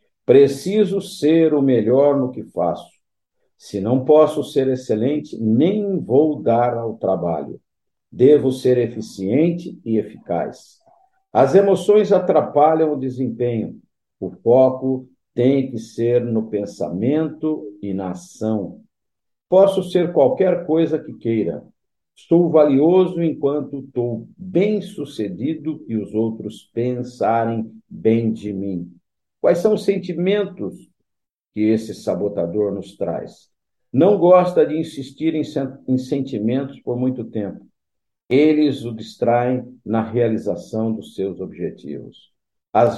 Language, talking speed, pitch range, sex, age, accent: Portuguese, 115 wpm, 110-160 Hz, male, 50-69, Brazilian